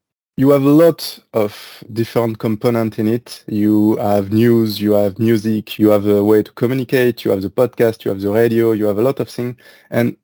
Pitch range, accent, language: 105-120 Hz, French, English